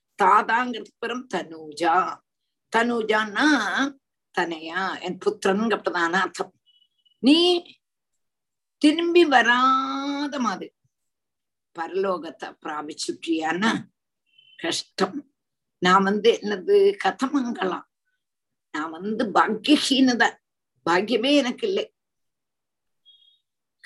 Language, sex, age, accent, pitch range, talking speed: Tamil, female, 50-69, native, 190-280 Hz, 65 wpm